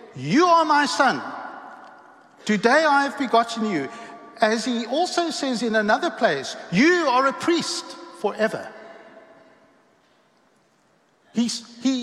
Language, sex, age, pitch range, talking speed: English, male, 60-79, 200-260 Hz, 110 wpm